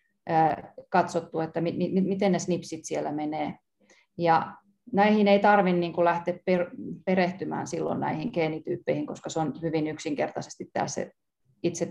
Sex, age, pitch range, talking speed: female, 30-49, 165-195 Hz, 140 wpm